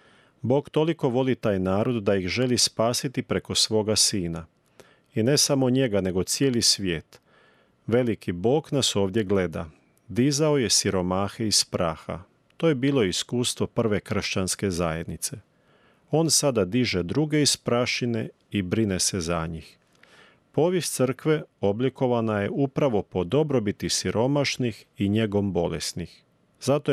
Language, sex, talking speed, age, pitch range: Croatian, male, 130 wpm, 40-59, 100-125 Hz